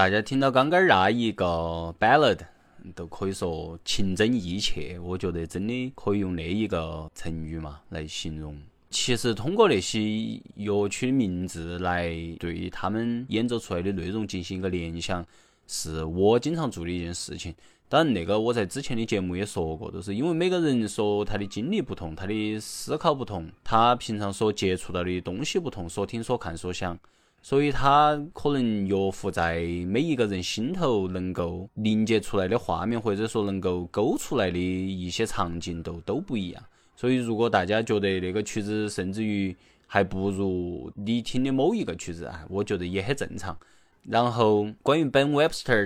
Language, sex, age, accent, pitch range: Chinese, male, 20-39, native, 90-115 Hz